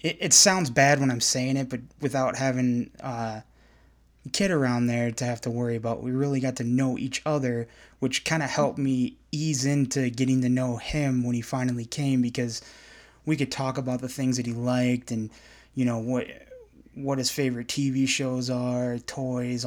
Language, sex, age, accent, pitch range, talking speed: English, male, 20-39, American, 120-135 Hz, 190 wpm